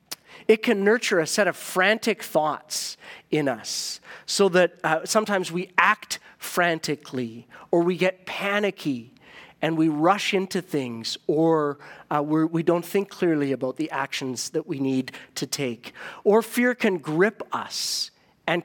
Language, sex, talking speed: English, male, 150 wpm